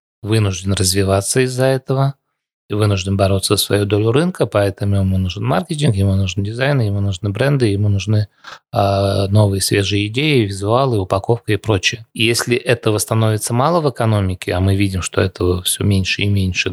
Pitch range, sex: 100-120 Hz, male